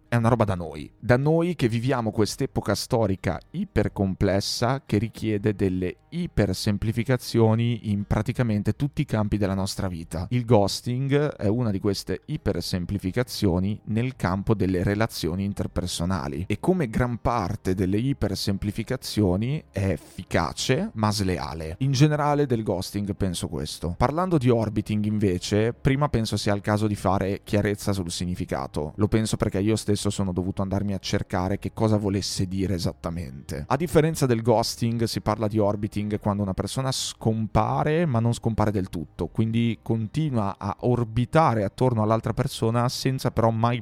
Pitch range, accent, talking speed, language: 95-120 Hz, native, 150 wpm, Italian